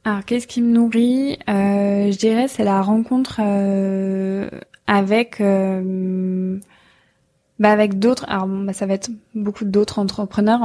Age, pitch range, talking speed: 20-39, 195-220 Hz, 140 wpm